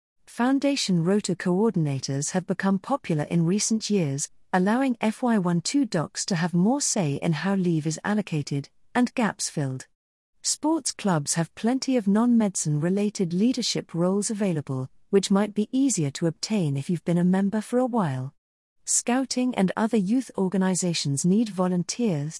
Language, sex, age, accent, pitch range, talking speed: English, female, 40-59, British, 155-210 Hz, 145 wpm